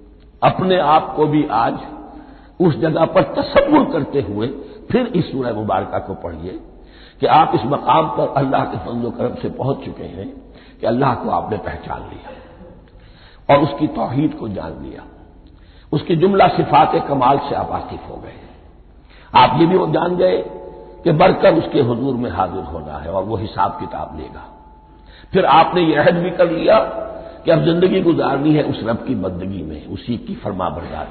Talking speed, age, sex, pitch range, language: 170 wpm, 60-79, male, 105-165 Hz, Hindi